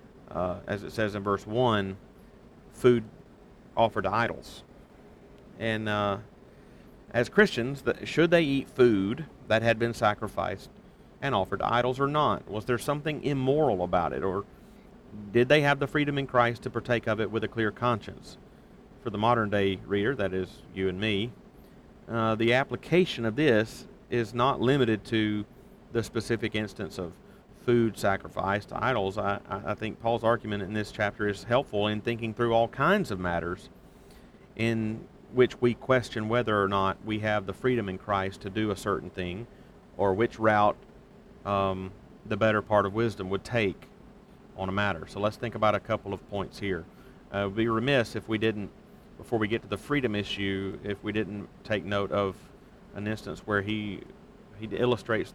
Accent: American